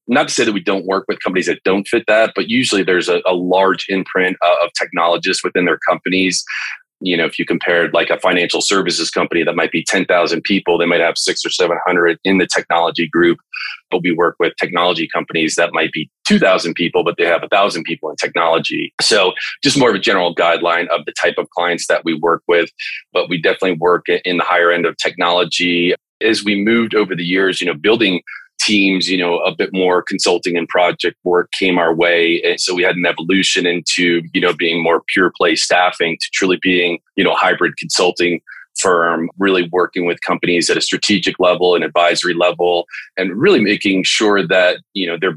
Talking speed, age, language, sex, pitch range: 215 wpm, 30-49, English, male, 85-95 Hz